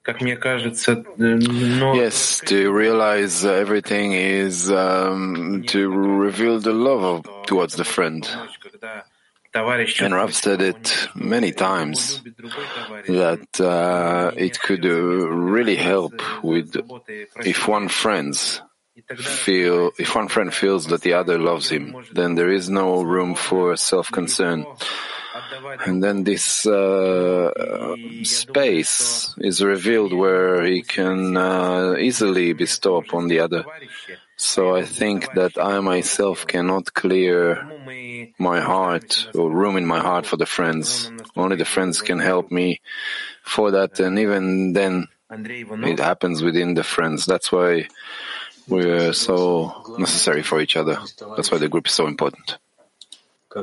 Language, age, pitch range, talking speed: English, 30-49, 90-110 Hz, 125 wpm